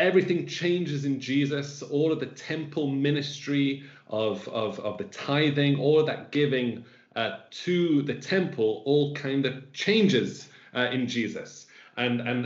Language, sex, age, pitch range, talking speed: English, male, 40-59, 125-145 Hz, 145 wpm